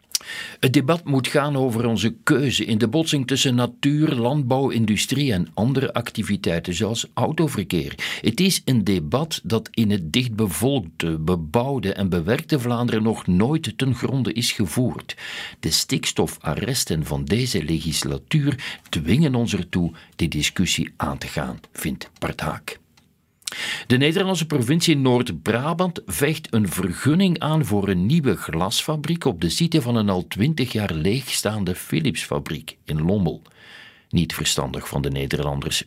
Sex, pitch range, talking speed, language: male, 90-135 Hz, 135 wpm, Dutch